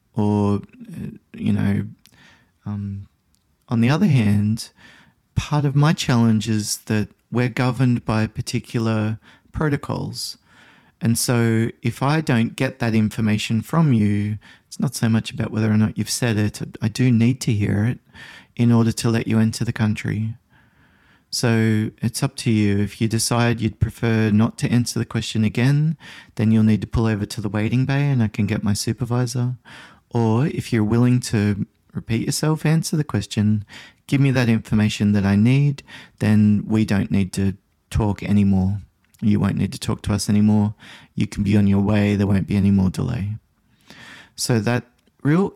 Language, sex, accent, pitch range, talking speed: English, male, Australian, 105-125 Hz, 175 wpm